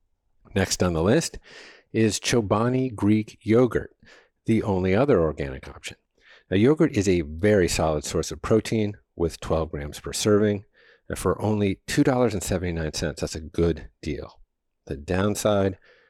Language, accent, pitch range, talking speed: English, American, 85-110 Hz, 140 wpm